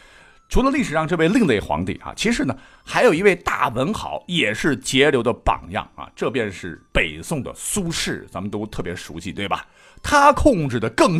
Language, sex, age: Chinese, male, 50-69